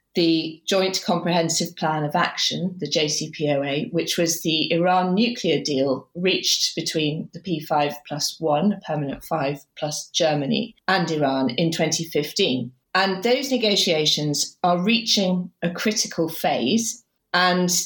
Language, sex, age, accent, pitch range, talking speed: English, female, 40-59, British, 155-205 Hz, 125 wpm